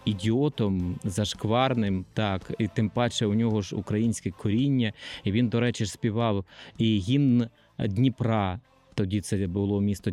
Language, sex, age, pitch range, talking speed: Ukrainian, male, 20-39, 105-130 Hz, 135 wpm